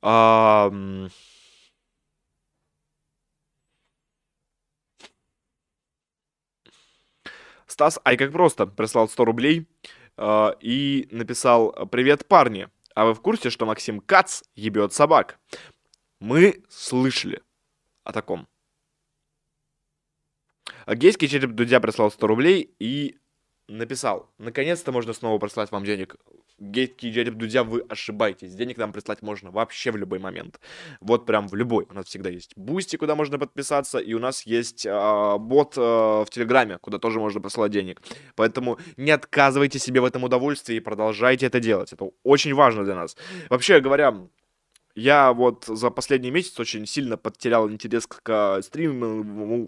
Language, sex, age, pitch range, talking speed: Russian, male, 20-39, 110-140 Hz, 130 wpm